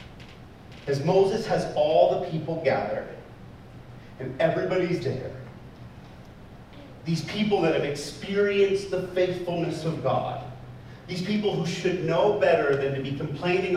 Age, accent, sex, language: 40-59, American, male, English